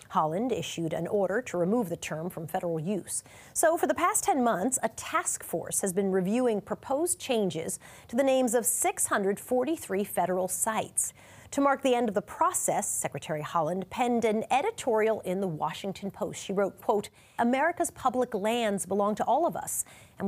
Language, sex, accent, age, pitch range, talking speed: English, female, American, 40-59, 185-250 Hz, 180 wpm